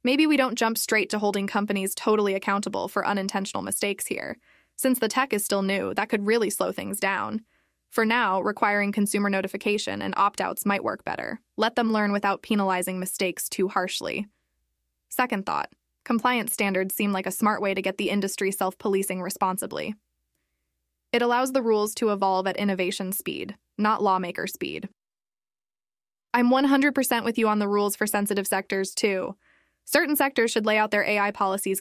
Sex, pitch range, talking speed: female, 195-220 Hz, 170 wpm